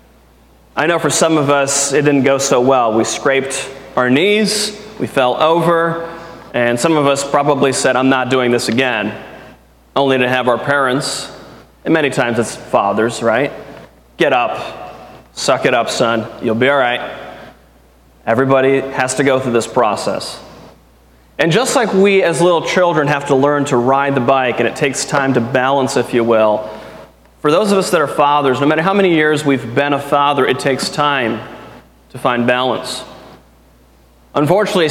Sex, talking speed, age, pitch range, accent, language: male, 175 wpm, 30-49, 125-145 Hz, American, English